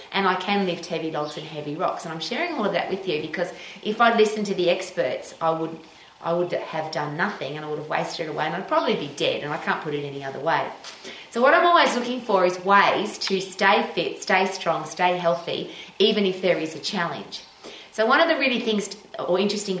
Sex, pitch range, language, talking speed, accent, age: female, 160-200 Hz, English, 245 wpm, Australian, 30-49